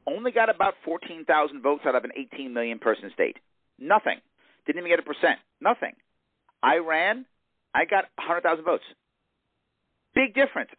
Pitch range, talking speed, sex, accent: 140-220 Hz, 150 wpm, male, American